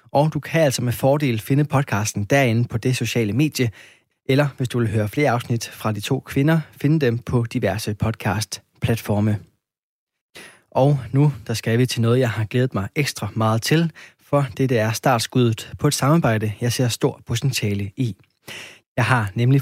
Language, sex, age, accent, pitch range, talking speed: Danish, male, 20-39, native, 115-140 Hz, 175 wpm